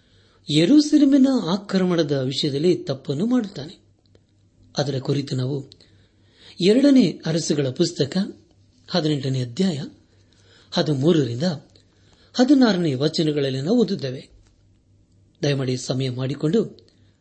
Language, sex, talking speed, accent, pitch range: Kannada, male, 70 wpm, native, 100-160 Hz